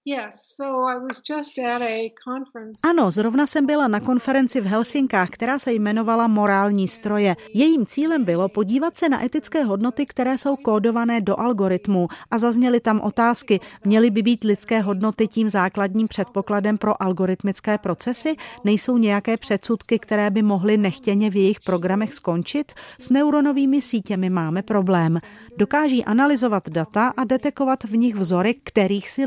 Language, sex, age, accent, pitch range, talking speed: Czech, female, 40-59, native, 195-255 Hz, 135 wpm